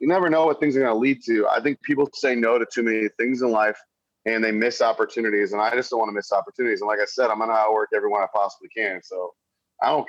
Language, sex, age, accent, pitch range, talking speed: English, male, 30-49, American, 105-125 Hz, 285 wpm